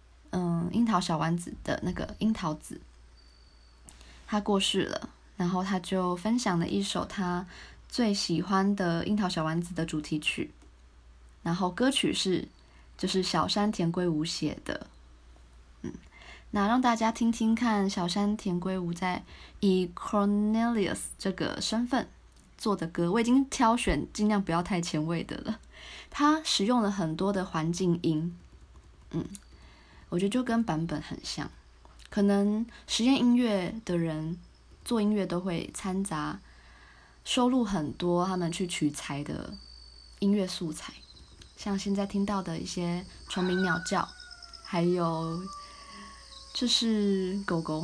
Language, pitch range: Chinese, 160-210 Hz